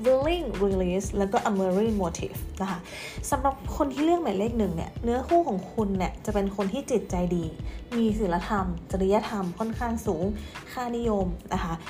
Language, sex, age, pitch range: Thai, female, 20-39, 185-235 Hz